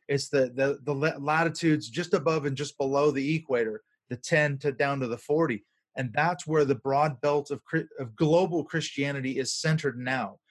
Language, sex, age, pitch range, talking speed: English, male, 30-49, 135-160 Hz, 185 wpm